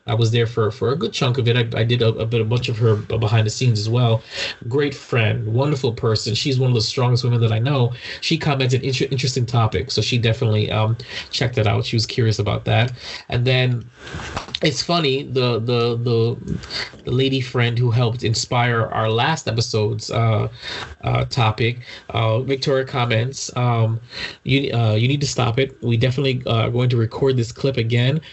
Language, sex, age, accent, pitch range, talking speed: English, male, 20-39, American, 115-135 Hz, 195 wpm